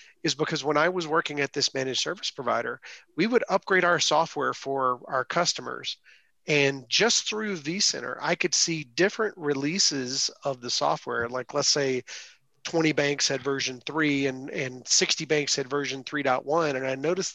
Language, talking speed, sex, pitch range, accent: English, 170 wpm, male, 130-160 Hz, American